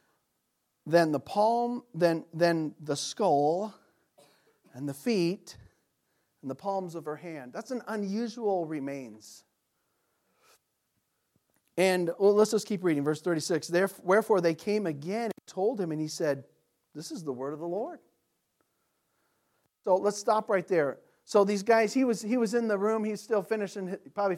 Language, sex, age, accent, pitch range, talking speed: English, male, 40-59, American, 150-205 Hz, 160 wpm